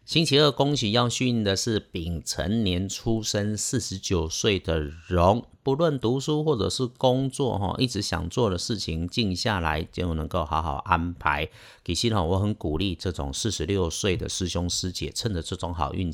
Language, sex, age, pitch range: Chinese, male, 50-69, 85-120 Hz